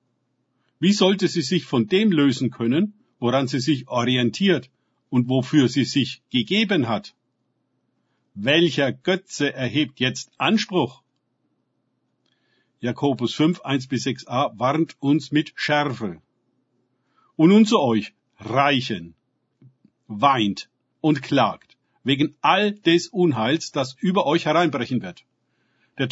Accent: German